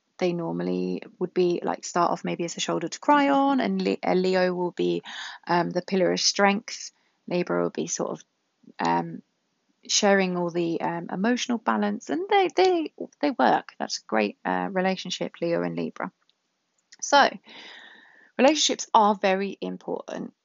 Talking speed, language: 155 wpm, English